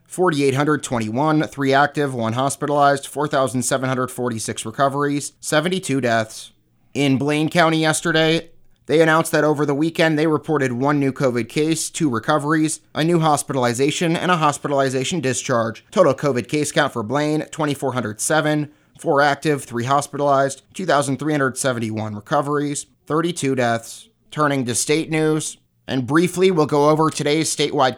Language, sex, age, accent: English, male, 30-49, American